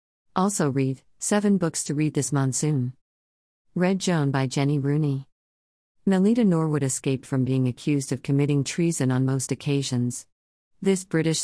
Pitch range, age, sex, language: 130-155 Hz, 50-69, female, English